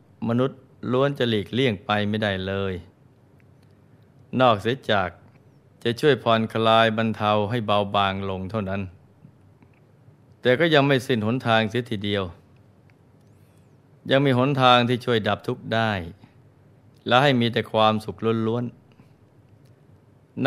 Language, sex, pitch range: Thai, male, 105-130 Hz